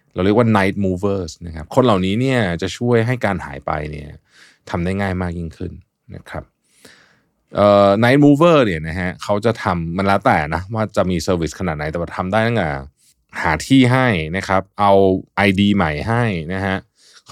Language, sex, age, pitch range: Thai, male, 20-39, 90-120 Hz